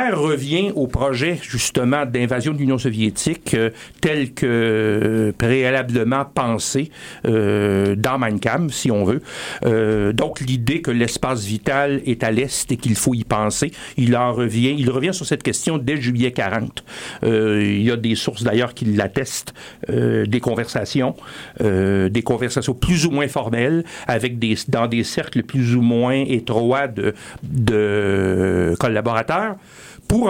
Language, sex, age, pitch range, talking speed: French, male, 60-79, 115-140 Hz, 145 wpm